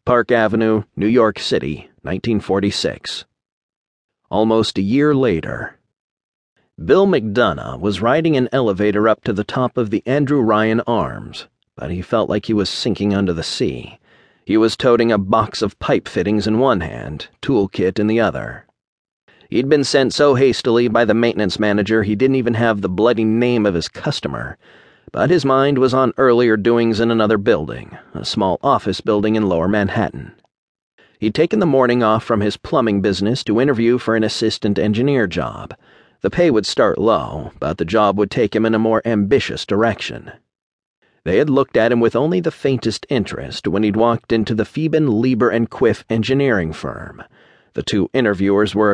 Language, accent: English, American